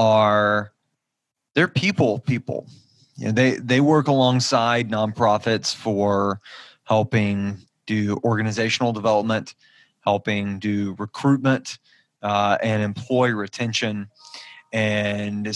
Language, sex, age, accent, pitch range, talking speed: English, male, 20-39, American, 105-130 Hz, 95 wpm